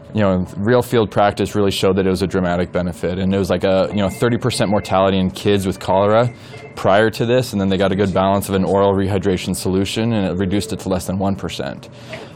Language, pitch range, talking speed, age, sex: English, 95-110 Hz, 240 wpm, 20-39, male